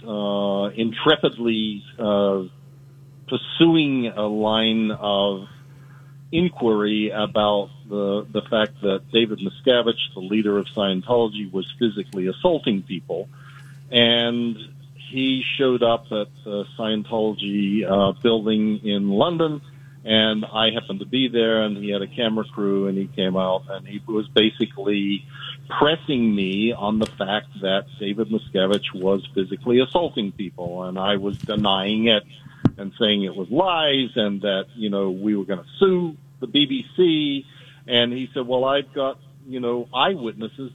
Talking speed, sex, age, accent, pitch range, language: 140 wpm, male, 50-69, American, 105-140 Hz, English